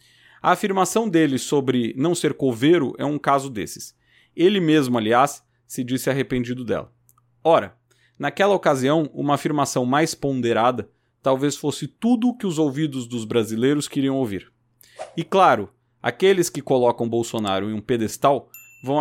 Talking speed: 145 wpm